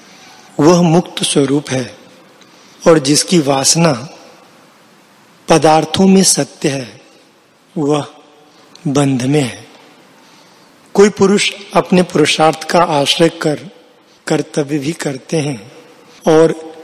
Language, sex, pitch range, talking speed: Hindi, male, 150-180 Hz, 95 wpm